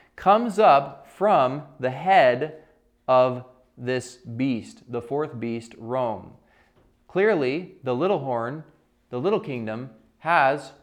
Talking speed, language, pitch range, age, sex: 110 wpm, English, 125-150 Hz, 20-39, male